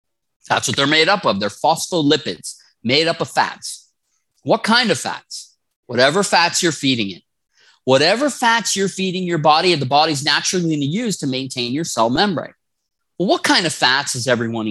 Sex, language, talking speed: male, English, 185 wpm